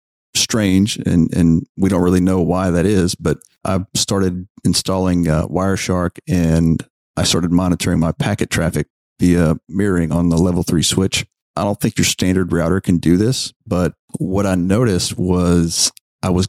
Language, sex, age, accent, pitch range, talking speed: English, male, 40-59, American, 85-100 Hz, 165 wpm